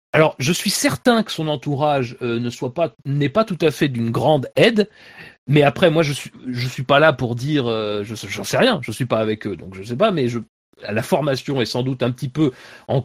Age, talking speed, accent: 40-59, 260 wpm, French